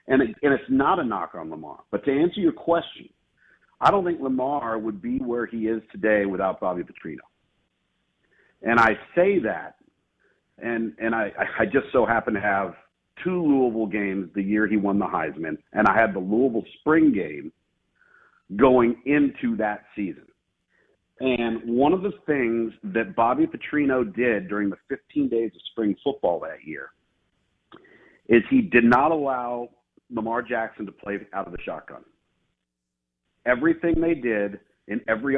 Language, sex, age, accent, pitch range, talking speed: English, male, 50-69, American, 110-155 Hz, 160 wpm